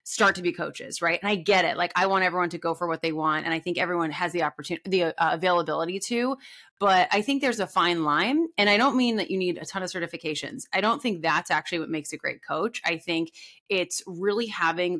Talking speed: 250 wpm